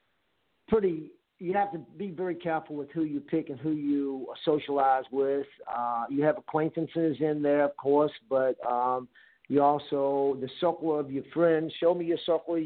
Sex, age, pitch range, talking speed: male, 50-69, 135-160 Hz, 175 wpm